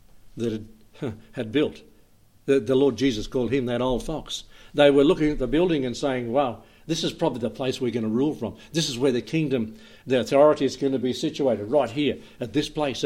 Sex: male